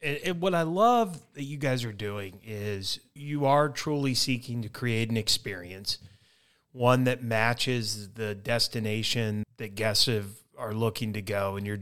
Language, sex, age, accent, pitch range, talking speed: English, male, 30-49, American, 105-130 Hz, 155 wpm